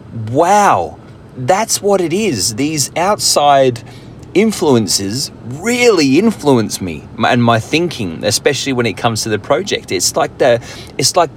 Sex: male